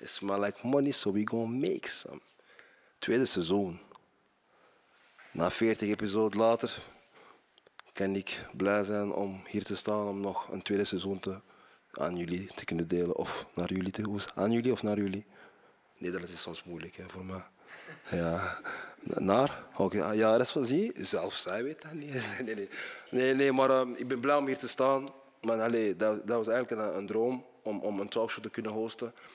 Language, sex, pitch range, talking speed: Dutch, male, 95-110 Hz, 190 wpm